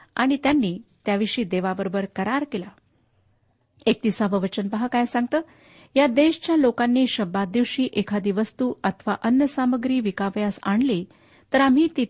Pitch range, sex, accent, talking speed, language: 195-260 Hz, female, native, 130 wpm, Marathi